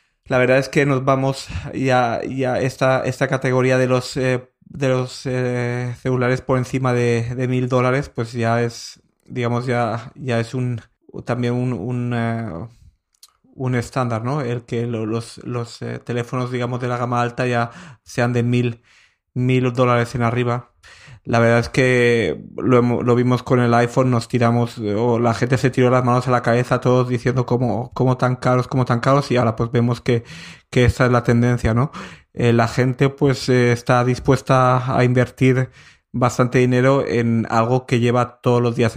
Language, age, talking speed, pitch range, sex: Spanish, 20-39, 180 wpm, 120-130 Hz, male